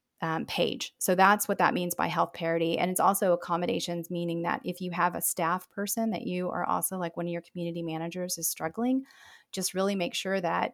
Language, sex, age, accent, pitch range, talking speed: English, female, 30-49, American, 165-190 Hz, 220 wpm